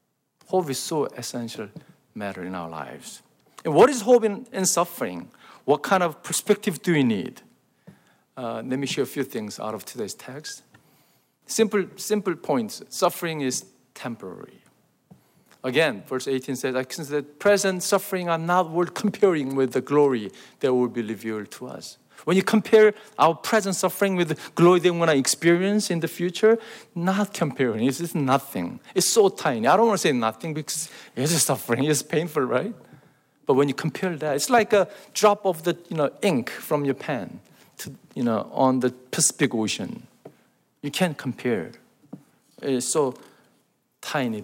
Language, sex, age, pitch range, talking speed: English, male, 50-69, 130-195 Hz, 170 wpm